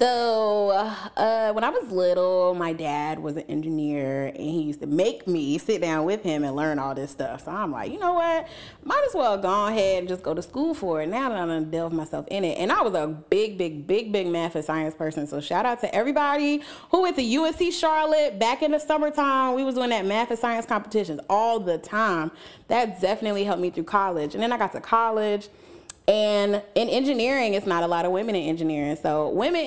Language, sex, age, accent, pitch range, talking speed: English, female, 30-49, American, 165-235 Hz, 235 wpm